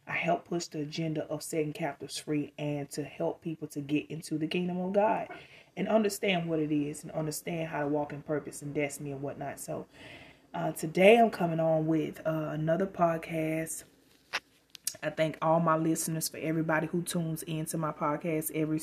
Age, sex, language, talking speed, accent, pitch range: 20-39, female, English, 190 wpm, American, 150-170 Hz